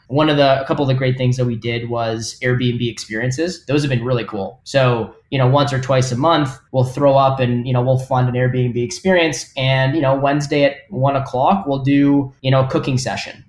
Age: 10-29